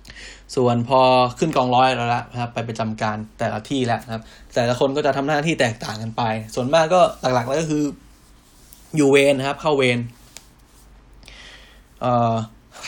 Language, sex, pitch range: Thai, male, 110-130 Hz